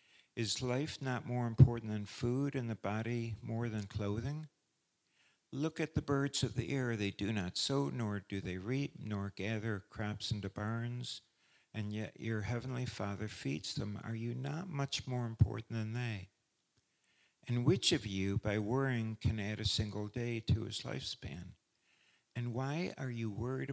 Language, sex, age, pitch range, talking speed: English, male, 60-79, 105-125 Hz, 170 wpm